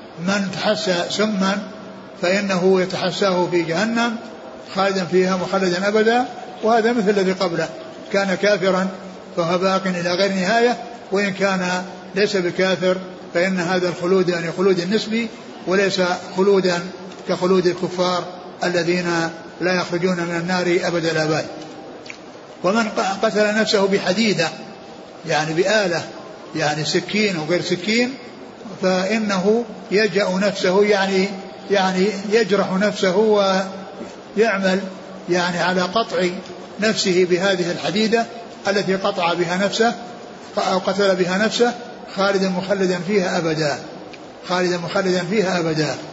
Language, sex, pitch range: Arabic, male, 175-205 Hz